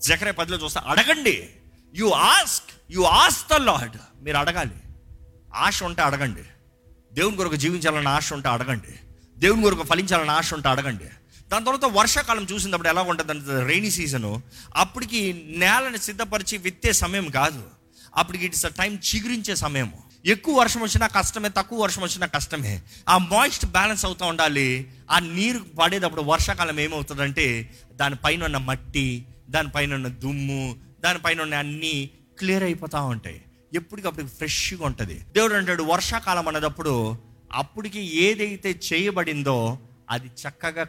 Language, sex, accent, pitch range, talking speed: Telugu, male, native, 130-195 Hz, 125 wpm